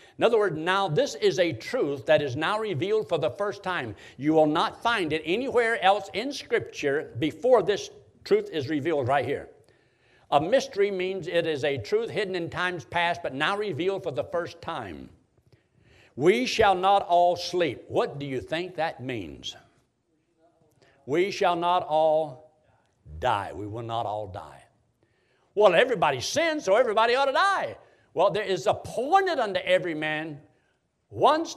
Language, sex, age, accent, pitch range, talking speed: English, male, 60-79, American, 145-200 Hz, 165 wpm